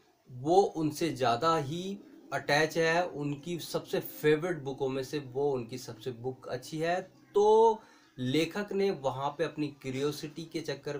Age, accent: 30-49, native